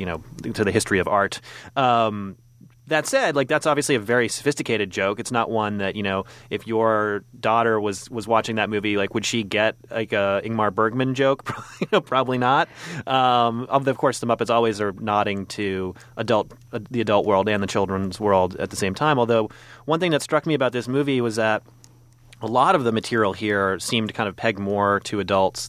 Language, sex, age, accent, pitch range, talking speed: English, male, 30-49, American, 100-120 Hz, 205 wpm